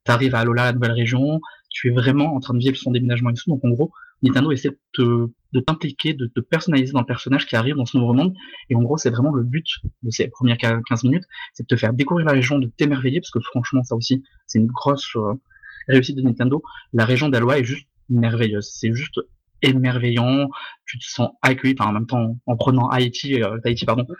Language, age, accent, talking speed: French, 20-39, French, 225 wpm